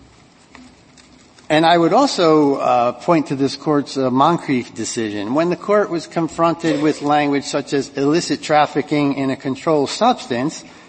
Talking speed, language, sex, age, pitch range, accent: 150 wpm, English, male, 60-79, 125-160 Hz, American